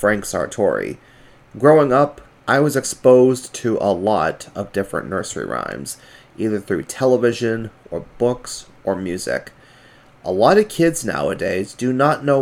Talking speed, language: 140 wpm, English